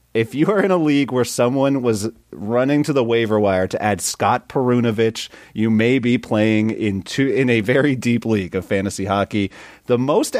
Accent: American